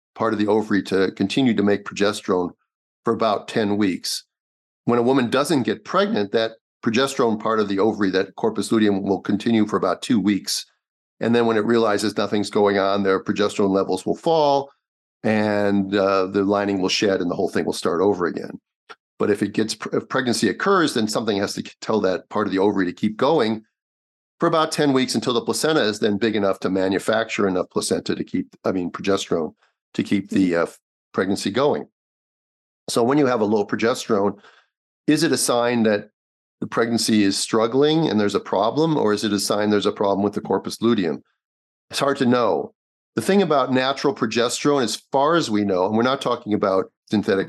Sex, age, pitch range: male, 40-59, 100-120 Hz